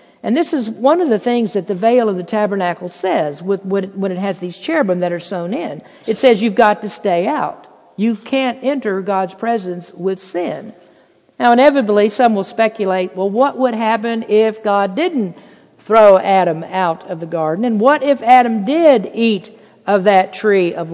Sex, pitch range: female, 185-230 Hz